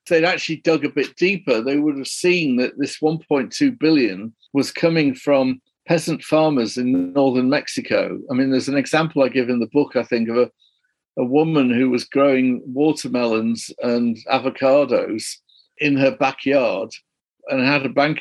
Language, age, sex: English, 50-69, male